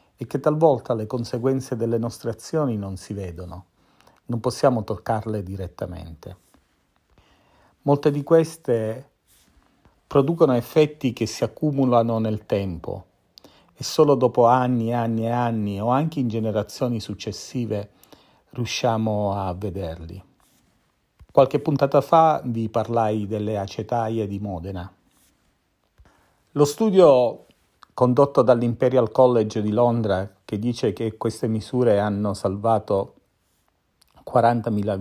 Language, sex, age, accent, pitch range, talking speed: Italian, male, 40-59, native, 105-130 Hz, 110 wpm